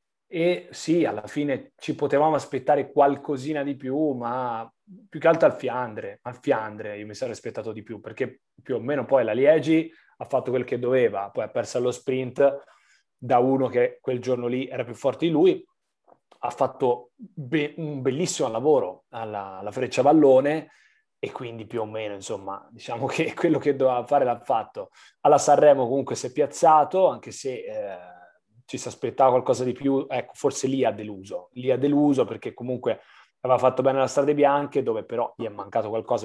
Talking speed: 185 wpm